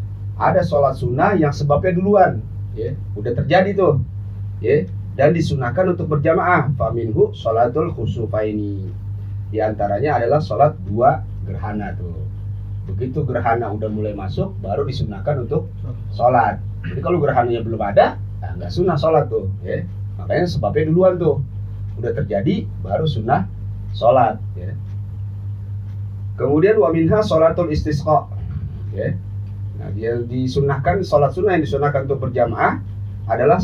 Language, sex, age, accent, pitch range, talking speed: Indonesian, male, 30-49, native, 100-140 Hz, 125 wpm